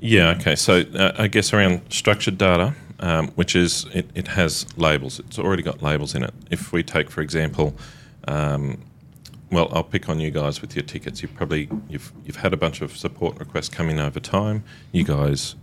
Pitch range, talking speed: 70-95 Hz, 200 wpm